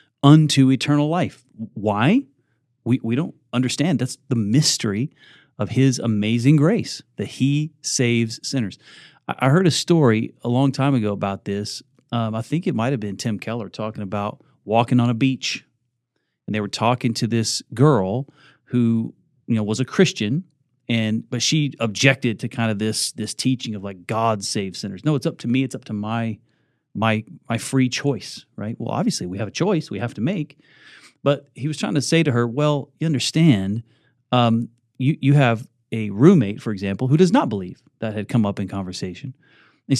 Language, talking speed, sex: English, 190 wpm, male